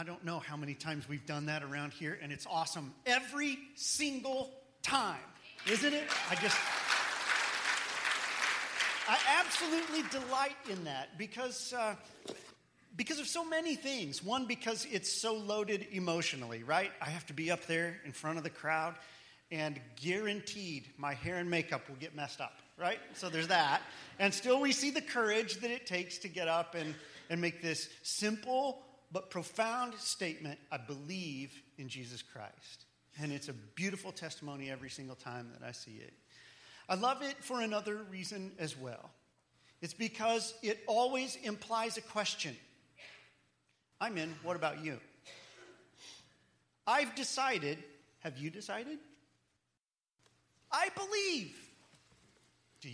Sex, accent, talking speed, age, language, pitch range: male, American, 145 wpm, 40-59, English, 150-235 Hz